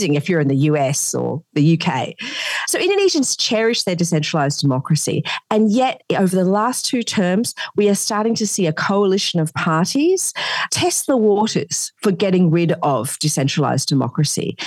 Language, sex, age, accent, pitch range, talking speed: English, female, 40-59, Australian, 155-205 Hz, 160 wpm